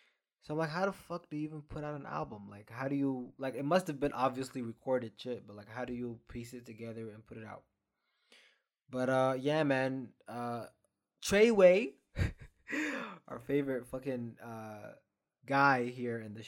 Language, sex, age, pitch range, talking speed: English, male, 20-39, 115-150 Hz, 190 wpm